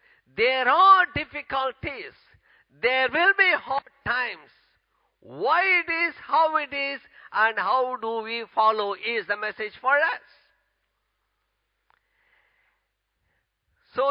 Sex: male